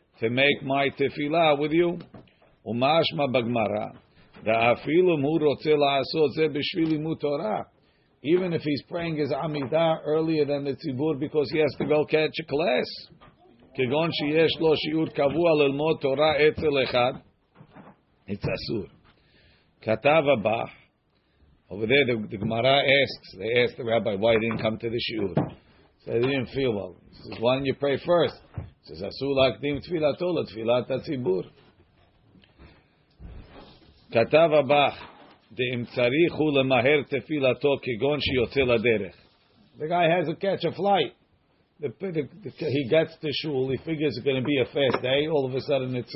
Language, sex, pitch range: English, male, 125-160 Hz